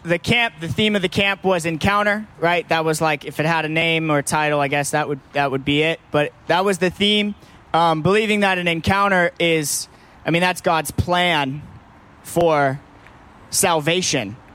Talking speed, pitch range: 195 wpm, 160-195 Hz